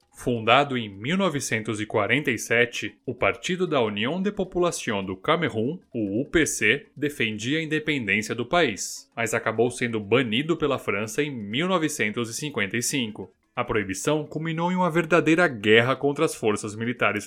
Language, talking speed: Portuguese, 130 wpm